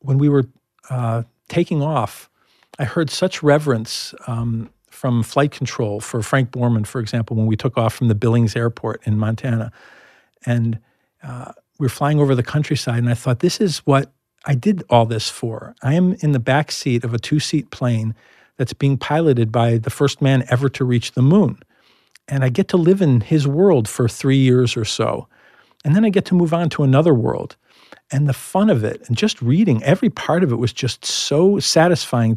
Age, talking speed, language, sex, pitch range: 50-69, 200 wpm, English, male, 115-145 Hz